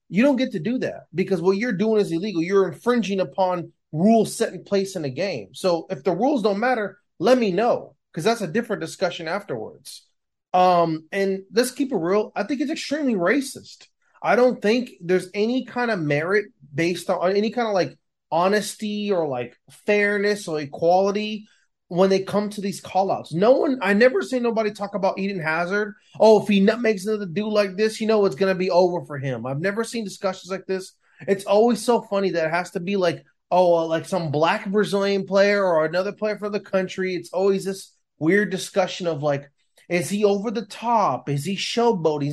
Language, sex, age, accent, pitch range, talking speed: English, male, 30-49, American, 175-215 Hz, 205 wpm